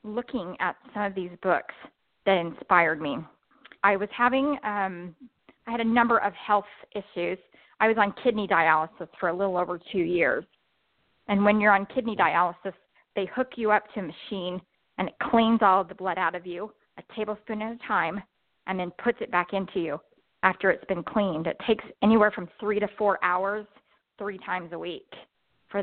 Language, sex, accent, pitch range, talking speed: English, female, American, 185-215 Hz, 195 wpm